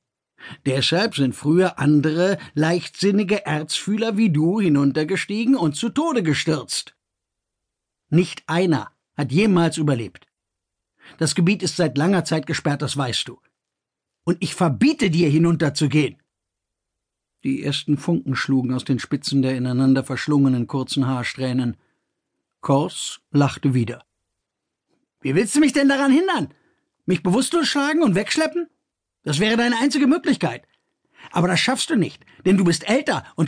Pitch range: 135-210 Hz